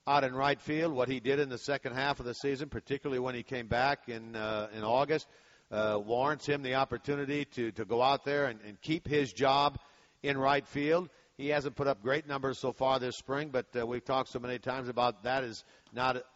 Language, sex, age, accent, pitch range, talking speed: English, male, 50-69, American, 115-140 Hz, 230 wpm